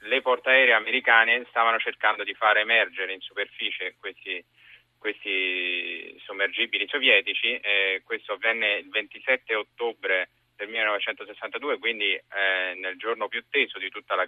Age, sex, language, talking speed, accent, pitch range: 30-49, male, Italian, 130 wpm, native, 100-125 Hz